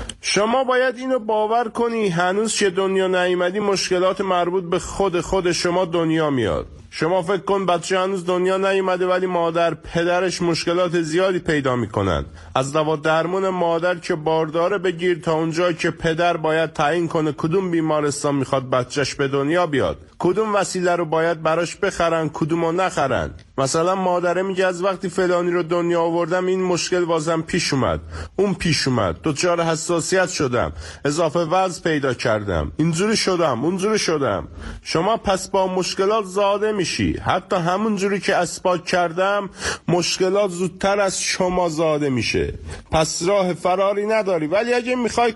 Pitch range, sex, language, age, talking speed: 160-195 Hz, male, Persian, 50-69, 150 wpm